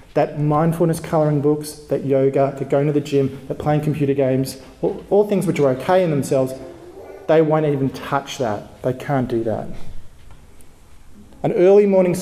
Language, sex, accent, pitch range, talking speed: English, male, Australian, 135-165 Hz, 170 wpm